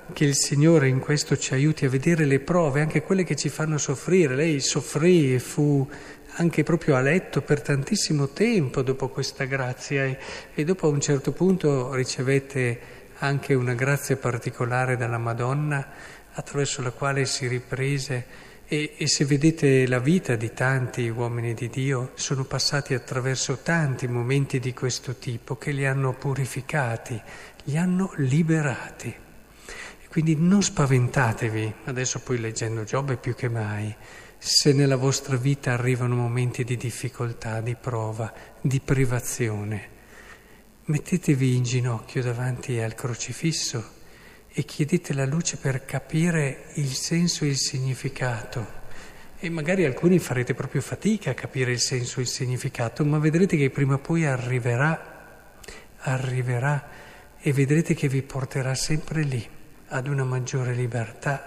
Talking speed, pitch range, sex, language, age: 145 wpm, 125-150 Hz, male, Italian, 50-69